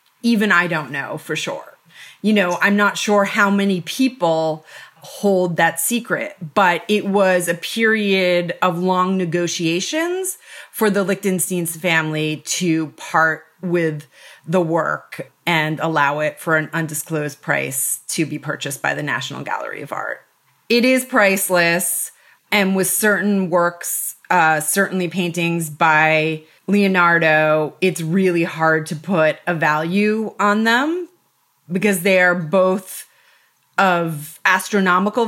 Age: 30-49